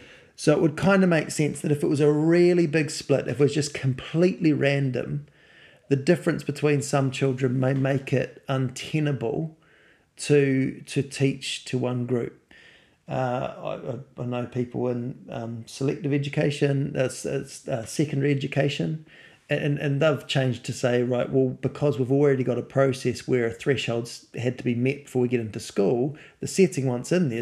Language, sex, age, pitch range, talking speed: English, male, 30-49, 125-150 Hz, 175 wpm